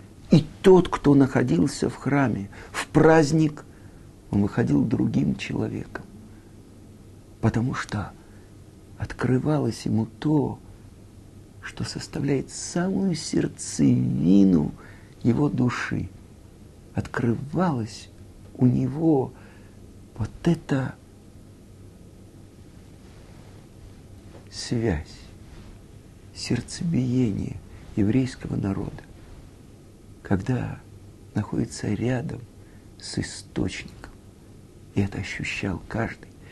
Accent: native